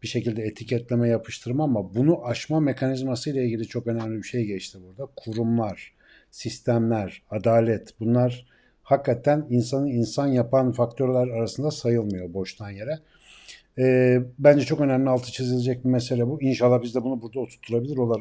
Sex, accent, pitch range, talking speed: male, native, 110-130 Hz, 140 wpm